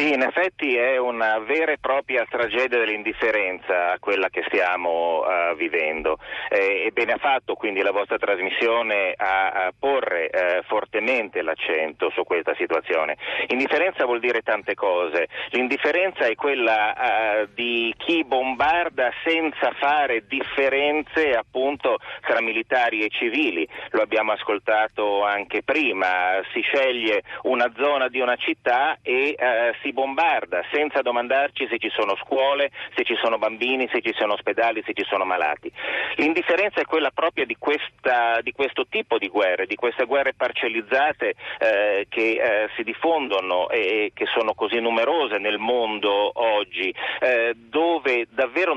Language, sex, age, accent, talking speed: Italian, male, 40-59, native, 140 wpm